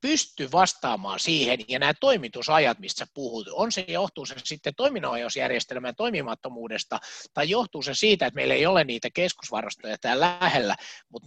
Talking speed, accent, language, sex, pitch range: 150 wpm, native, Finnish, male, 130-210 Hz